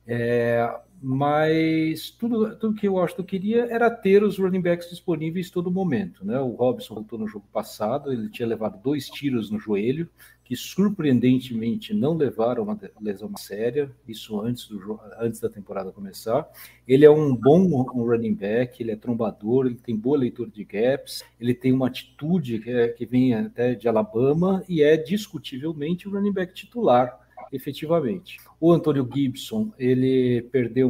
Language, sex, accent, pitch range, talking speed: Portuguese, male, Brazilian, 120-175 Hz, 165 wpm